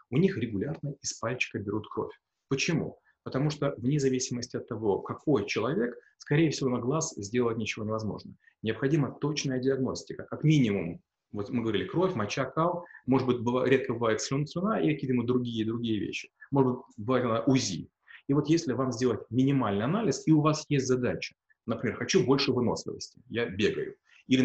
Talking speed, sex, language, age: 170 wpm, male, Russian, 30-49